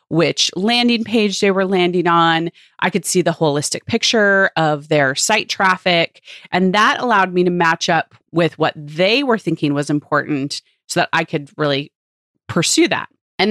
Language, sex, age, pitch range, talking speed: English, female, 30-49, 165-205 Hz, 175 wpm